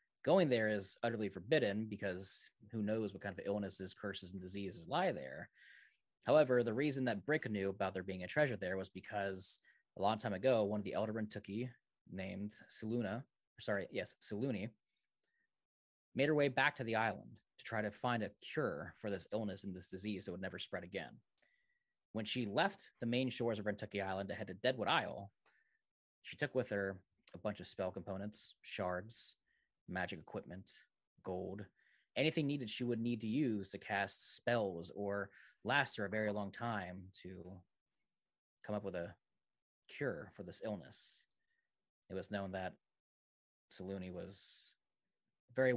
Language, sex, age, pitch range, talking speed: English, male, 30-49, 95-120 Hz, 170 wpm